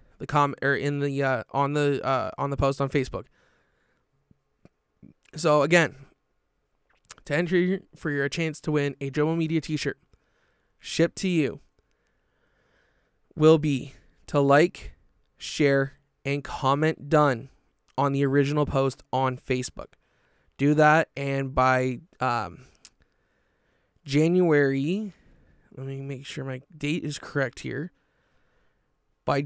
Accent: American